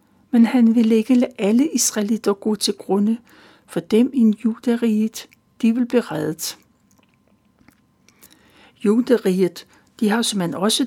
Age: 60-79